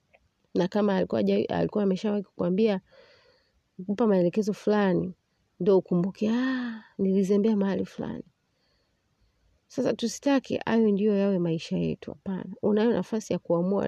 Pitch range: 190-230 Hz